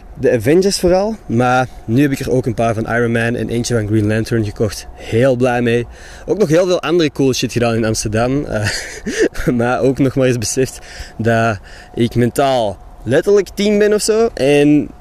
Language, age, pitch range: Dutch, 20-39, 115-145 Hz